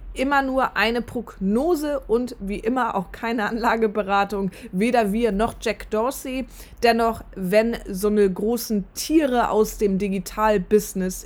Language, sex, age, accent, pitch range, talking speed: German, female, 20-39, German, 210-265 Hz, 130 wpm